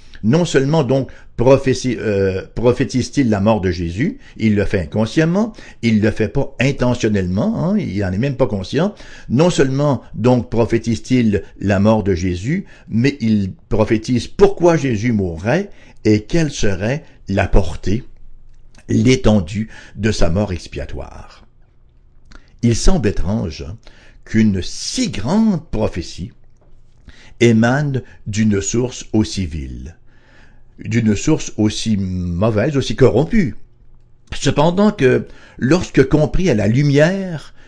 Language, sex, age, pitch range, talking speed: English, male, 60-79, 100-130 Hz, 120 wpm